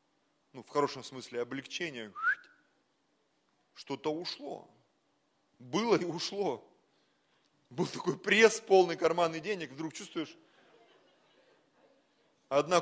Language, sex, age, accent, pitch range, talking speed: Russian, male, 30-49, native, 145-210 Hz, 95 wpm